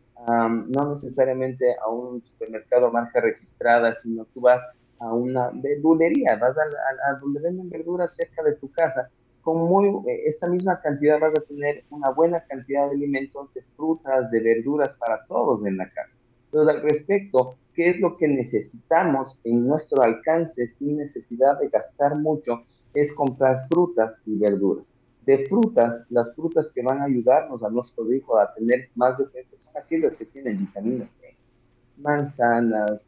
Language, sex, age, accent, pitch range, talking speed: Spanish, male, 40-59, Mexican, 120-150 Hz, 165 wpm